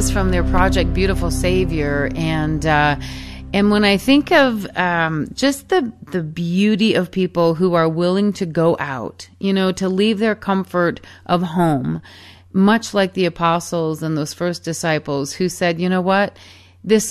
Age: 40-59